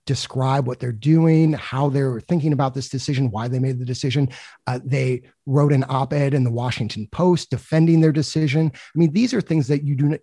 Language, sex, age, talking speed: English, male, 30-49, 205 wpm